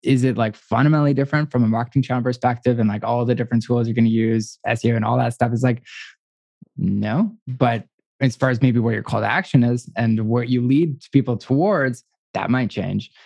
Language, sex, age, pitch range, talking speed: English, male, 20-39, 115-130 Hz, 215 wpm